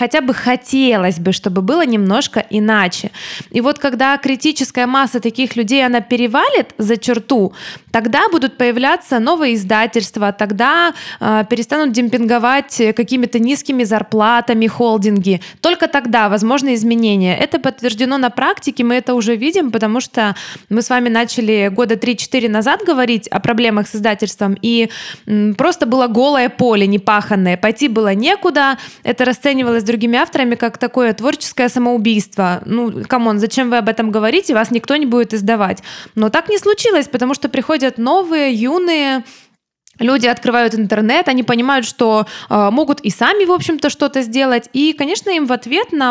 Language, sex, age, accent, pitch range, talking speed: Russian, female, 20-39, native, 225-275 Hz, 150 wpm